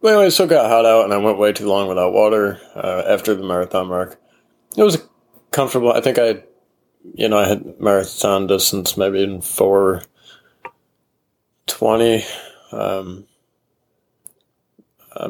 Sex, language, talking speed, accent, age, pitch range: male, English, 145 wpm, American, 20-39, 90-105 Hz